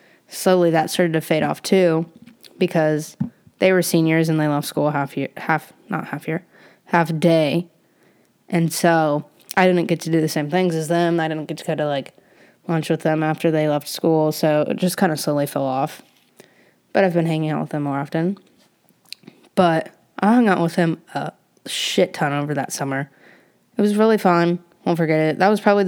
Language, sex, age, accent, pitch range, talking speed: English, female, 10-29, American, 155-185 Hz, 205 wpm